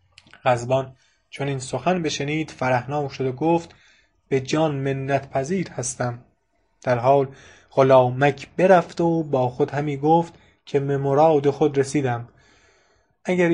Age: 20-39